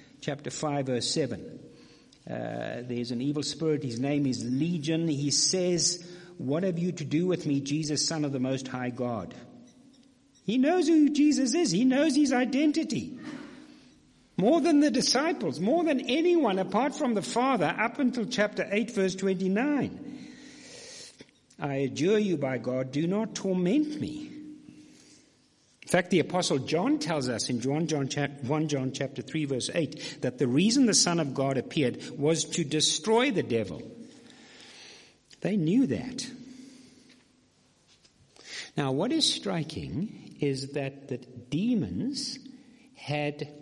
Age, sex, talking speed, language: 60-79, male, 140 wpm, English